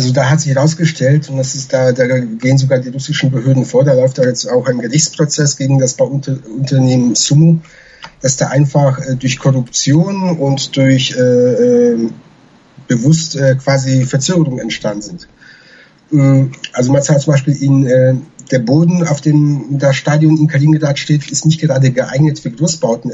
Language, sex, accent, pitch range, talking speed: German, male, German, 130-155 Hz, 160 wpm